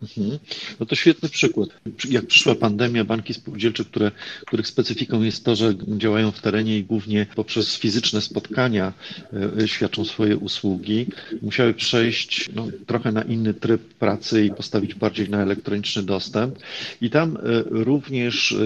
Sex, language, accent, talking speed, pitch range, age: male, Polish, native, 130 wpm, 100-115 Hz, 40-59